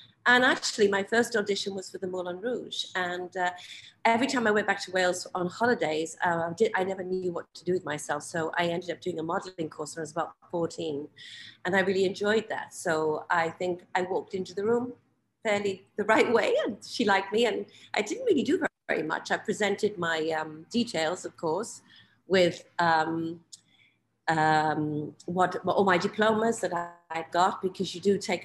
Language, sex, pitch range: English, female, 175-220 Hz